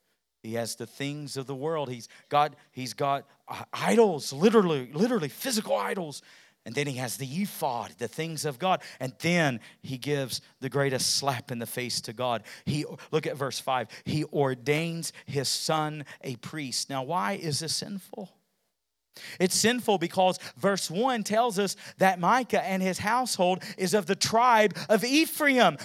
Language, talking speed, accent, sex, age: English, 165 wpm, American, male, 40-59